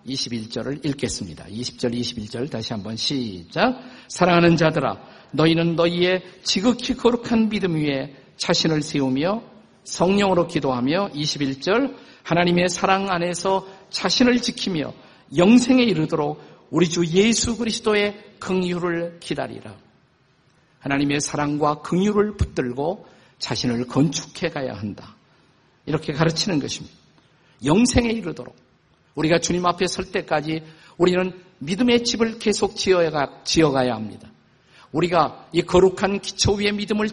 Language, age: Korean, 50-69